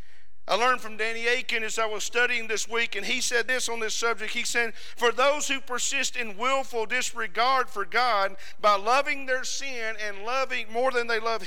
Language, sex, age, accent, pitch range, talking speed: English, male, 50-69, American, 225-270 Hz, 205 wpm